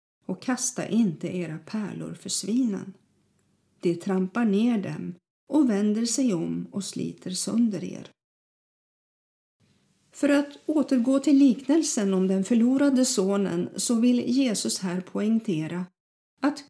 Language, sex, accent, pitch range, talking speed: Swedish, female, native, 185-245 Hz, 120 wpm